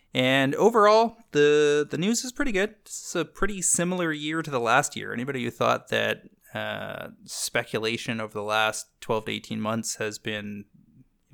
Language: English